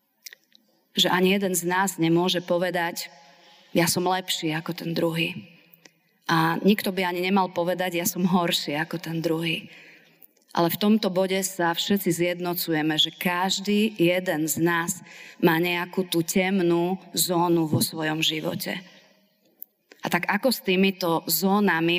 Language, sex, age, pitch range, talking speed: Slovak, female, 30-49, 170-200 Hz, 140 wpm